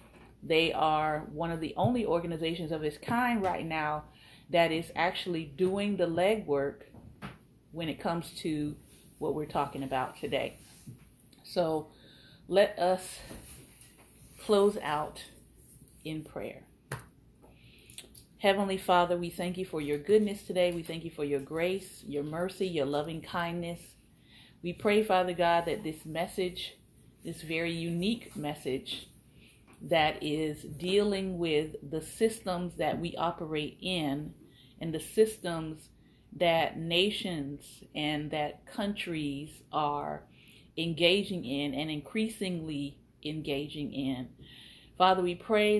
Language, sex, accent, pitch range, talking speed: English, female, American, 150-185 Hz, 120 wpm